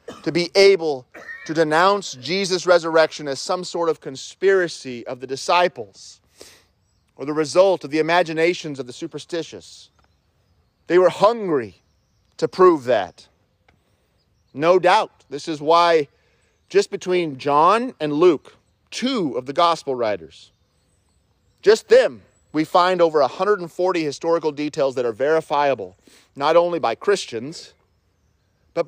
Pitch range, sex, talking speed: 120-170 Hz, male, 125 wpm